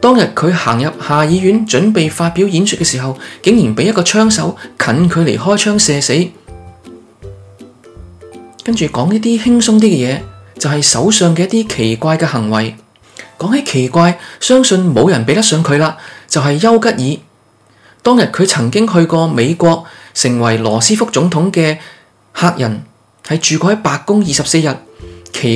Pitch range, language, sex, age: 135-205 Hz, Chinese, male, 20-39